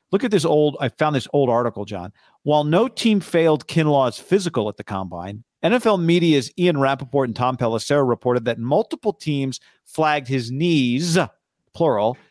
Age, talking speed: 40-59, 170 wpm